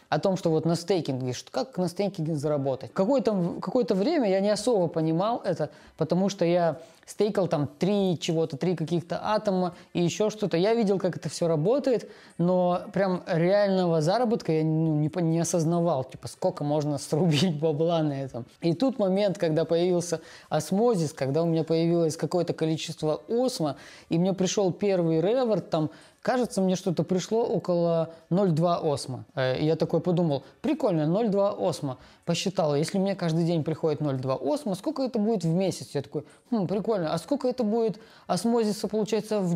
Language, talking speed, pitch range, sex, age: Russian, 170 wpm, 155-195 Hz, female, 20-39